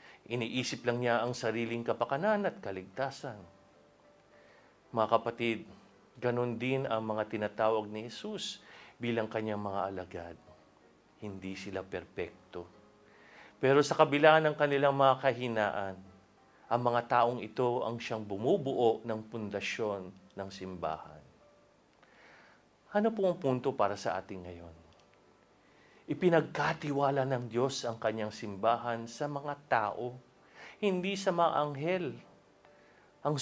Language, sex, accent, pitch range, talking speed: Filipino, male, native, 110-165 Hz, 115 wpm